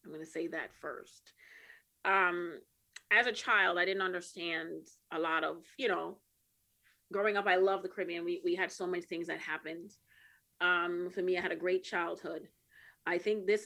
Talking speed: 190 wpm